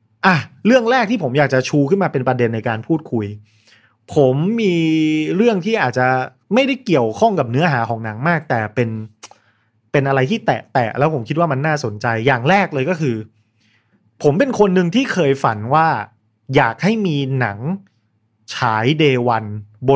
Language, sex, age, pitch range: Thai, male, 30-49, 115-165 Hz